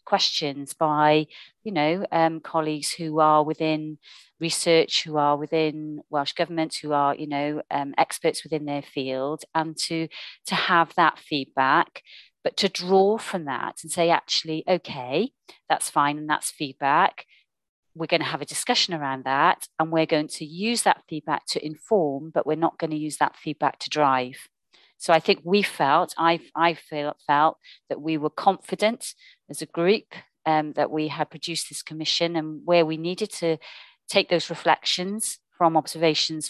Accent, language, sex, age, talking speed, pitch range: British, English, female, 40-59, 170 wpm, 150-175 Hz